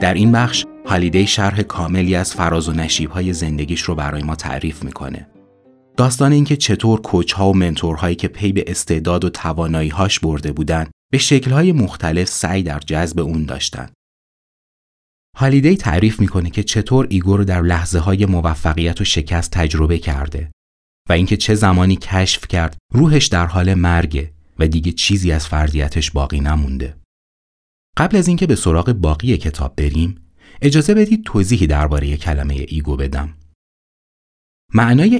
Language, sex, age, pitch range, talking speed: Persian, male, 30-49, 75-100 Hz, 150 wpm